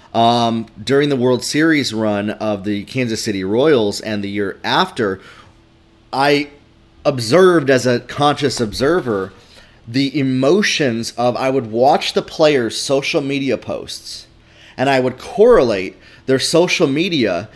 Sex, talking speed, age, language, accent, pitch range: male, 135 wpm, 30-49, English, American, 120-150 Hz